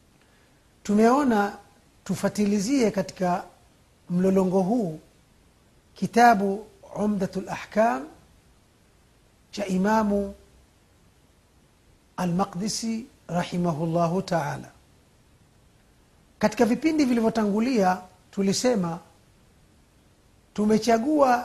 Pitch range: 170-210 Hz